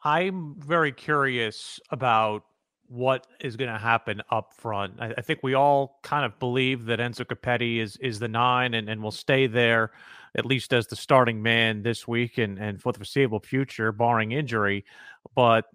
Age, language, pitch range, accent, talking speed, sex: 40-59, English, 120-135 Hz, American, 185 wpm, male